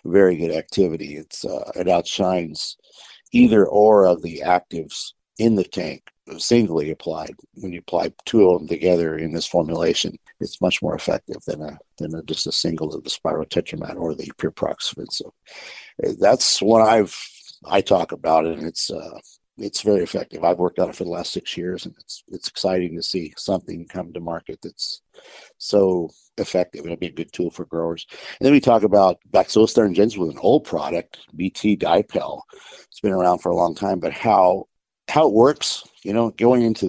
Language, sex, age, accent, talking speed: English, male, 60-79, American, 190 wpm